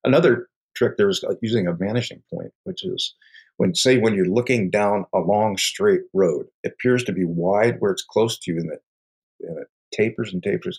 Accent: American